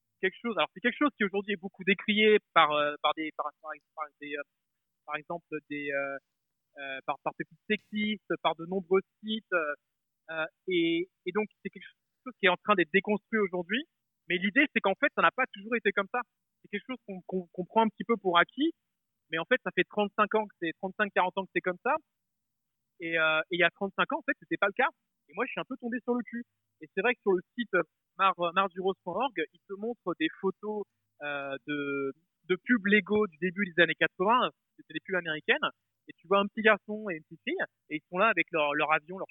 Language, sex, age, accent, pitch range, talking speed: French, male, 30-49, French, 155-210 Hz, 235 wpm